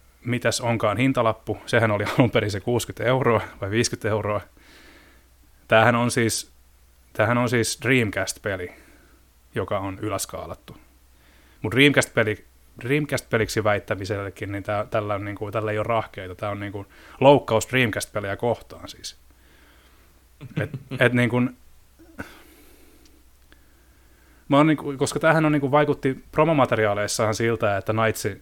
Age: 30-49